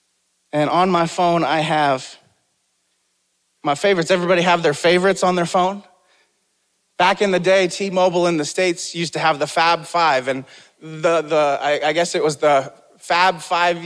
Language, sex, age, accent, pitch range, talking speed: English, male, 30-49, American, 175-245 Hz, 175 wpm